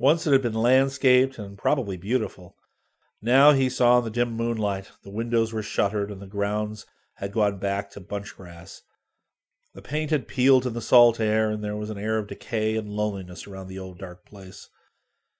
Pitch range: 100-130 Hz